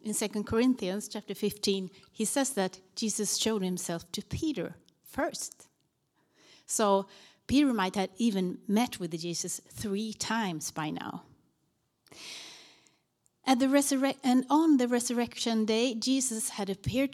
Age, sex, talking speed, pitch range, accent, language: 30-49, female, 120 wpm, 205-285 Hz, Swedish, Danish